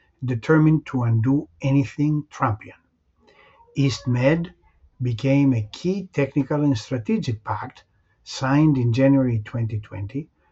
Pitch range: 115-150 Hz